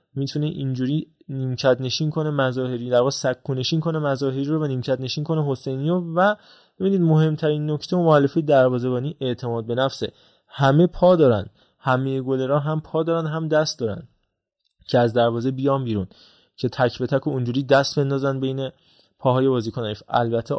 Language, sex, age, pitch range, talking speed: Persian, male, 20-39, 120-145 Hz, 165 wpm